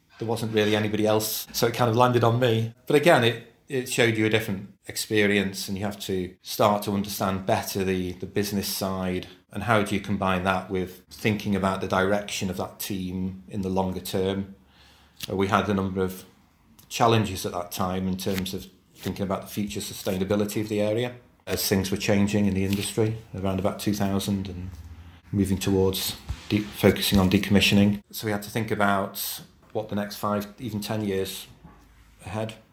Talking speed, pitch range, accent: 185 wpm, 95-110 Hz, British